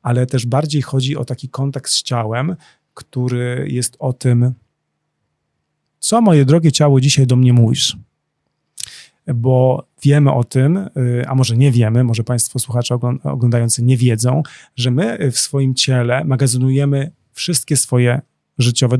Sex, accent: male, native